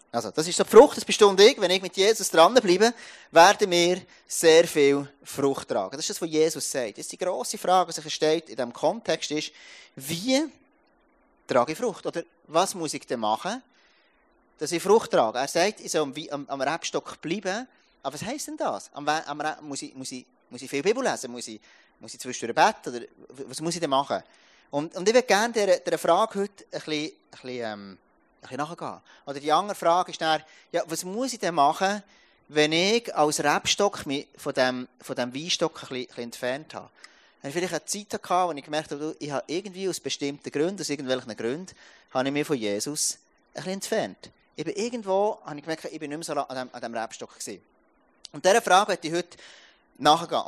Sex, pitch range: male, 145-195 Hz